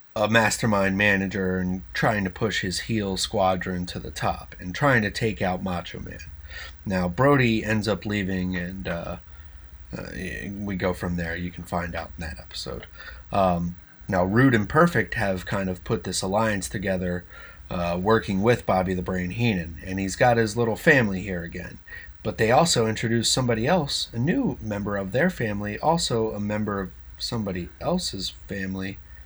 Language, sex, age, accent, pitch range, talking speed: English, male, 30-49, American, 90-120 Hz, 175 wpm